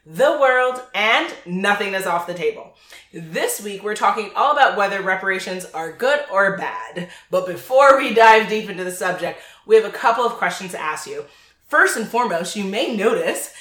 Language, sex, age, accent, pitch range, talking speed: English, female, 30-49, American, 200-250 Hz, 190 wpm